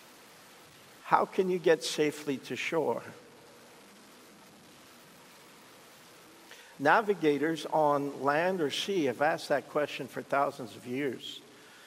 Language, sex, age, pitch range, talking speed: English, male, 50-69, 135-155 Hz, 100 wpm